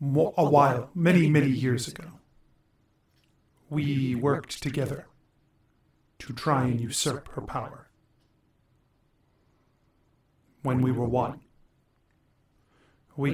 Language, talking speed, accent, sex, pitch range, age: English, 90 wpm, American, male, 125-150 Hz, 40-59